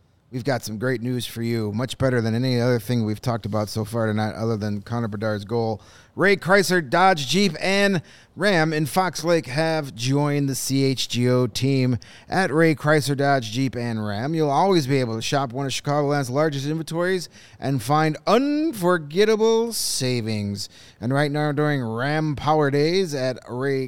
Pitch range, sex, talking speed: 120-160 Hz, male, 175 wpm